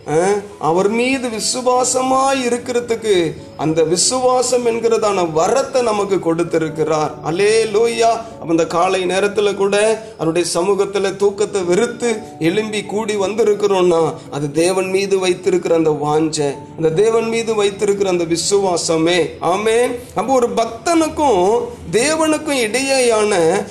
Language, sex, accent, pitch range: Tamil, male, native, 180-265 Hz